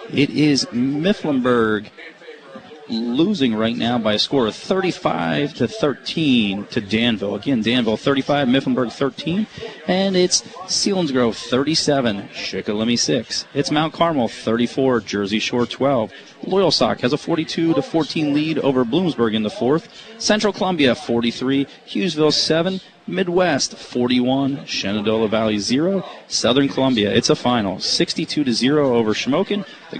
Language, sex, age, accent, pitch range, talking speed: English, male, 30-49, American, 115-155 Hz, 130 wpm